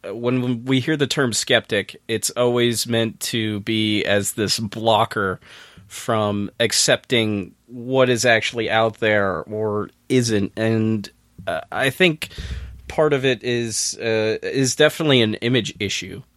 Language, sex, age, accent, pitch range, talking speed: English, male, 30-49, American, 110-130 Hz, 135 wpm